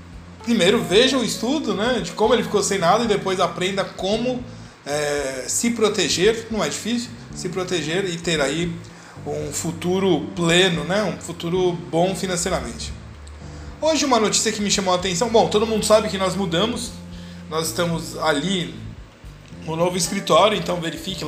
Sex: male